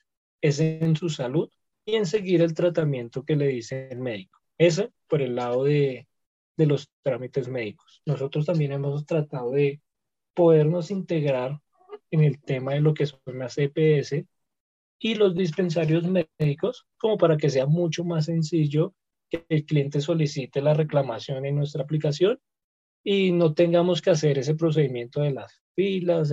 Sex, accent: male, Colombian